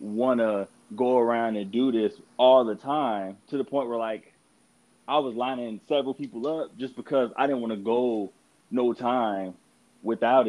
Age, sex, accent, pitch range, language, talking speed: 20-39, male, American, 100-120 Hz, English, 170 wpm